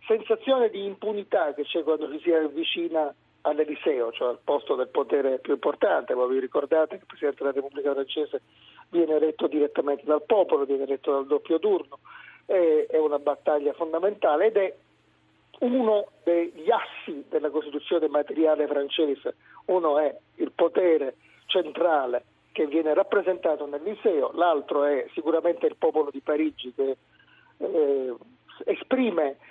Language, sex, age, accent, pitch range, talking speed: Italian, male, 50-69, native, 150-245 Hz, 135 wpm